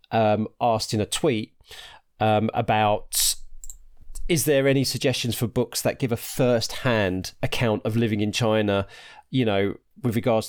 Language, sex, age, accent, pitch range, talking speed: English, male, 30-49, British, 105-130 Hz, 150 wpm